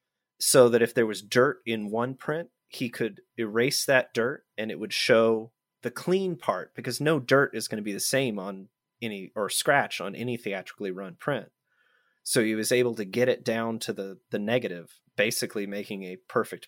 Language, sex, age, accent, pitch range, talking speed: English, male, 30-49, American, 100-125 Hz, 200 wpm